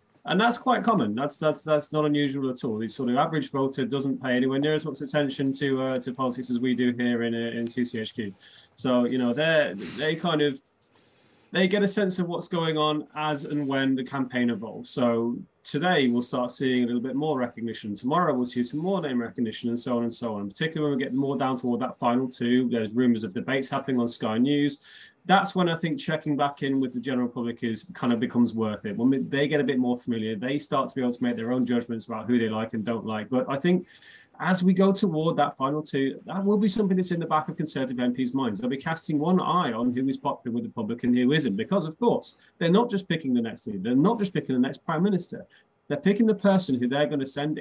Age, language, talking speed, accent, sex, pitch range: 20-39, English, 255 wpm, British, male, 120-155 Hz